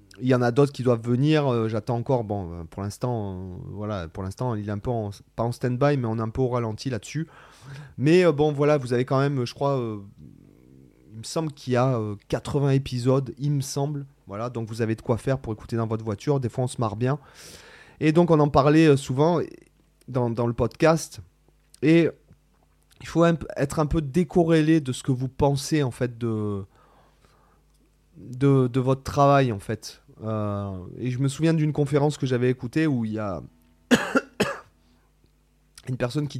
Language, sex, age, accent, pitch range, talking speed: French, male, 30-49, French, 110-145 Hz, 205 wpm